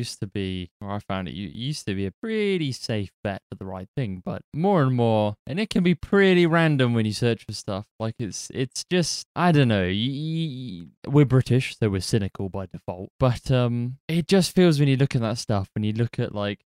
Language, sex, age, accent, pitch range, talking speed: English, male, 20-39, British, 100-135 Hz, 235 wpm